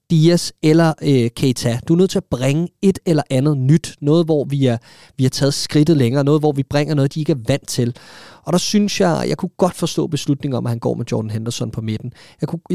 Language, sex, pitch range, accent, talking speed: Danish, male, 130-170 Hz, native, 255 wpm